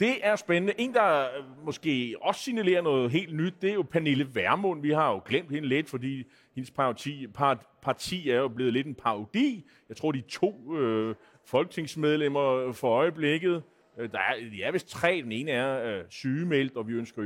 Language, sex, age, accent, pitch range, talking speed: Danish, male, 30-49, native, 125-165 Hz, 195 wpm